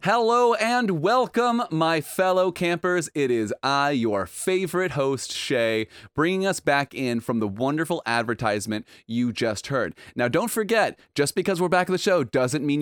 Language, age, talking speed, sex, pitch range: English, 30-49, 170 wpm, male, 115-175 Hz